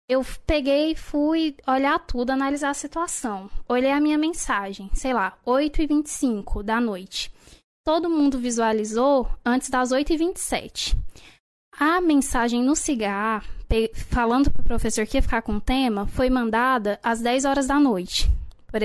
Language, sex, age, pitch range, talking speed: Portuguese, female, 10-29, 225-285 Hz, 145 wpm